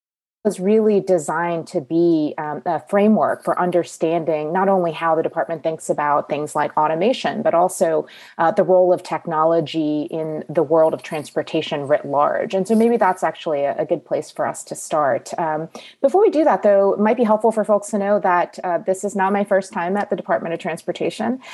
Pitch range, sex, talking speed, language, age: 155-185 Hz, female, 205 wpm, English, 30-49